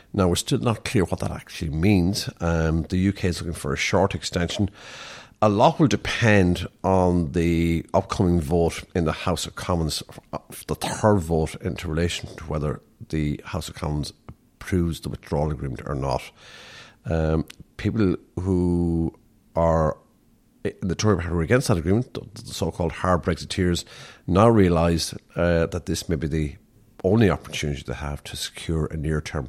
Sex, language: male, English